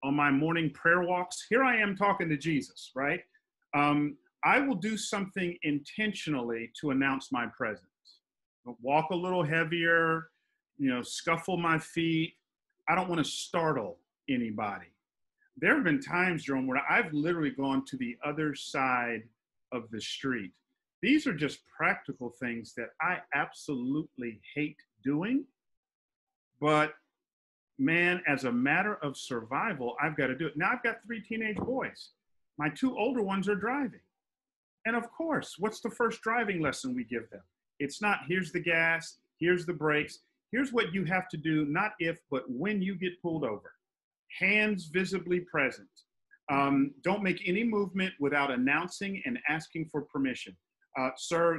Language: English